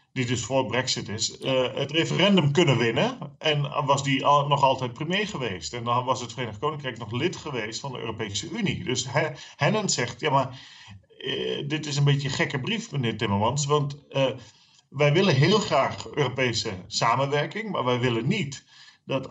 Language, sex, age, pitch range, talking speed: Dutch, male, 40-59, 120-150 Hz, 185 wpm